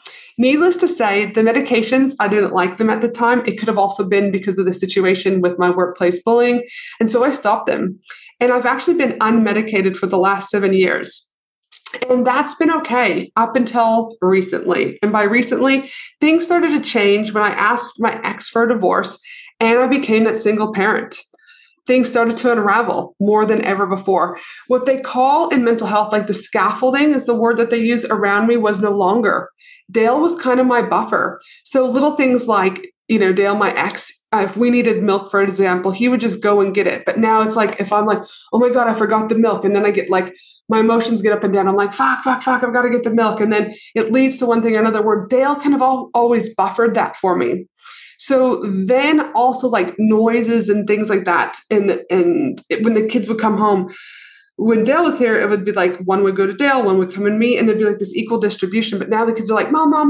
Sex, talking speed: female, 230 wpm